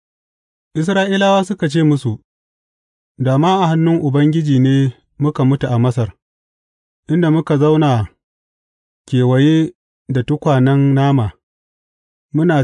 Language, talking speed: English, 75 wpm